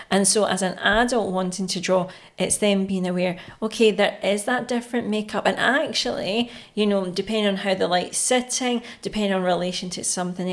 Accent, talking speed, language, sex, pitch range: British, 190 wpm, English, female, 180-210 Hz